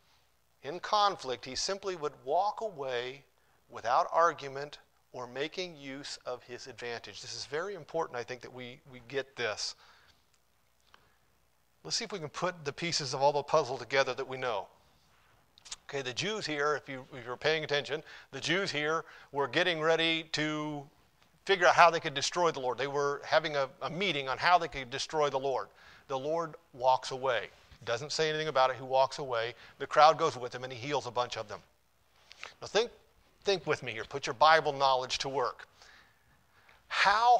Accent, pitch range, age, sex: American, 125-160 Hz, 40-59, male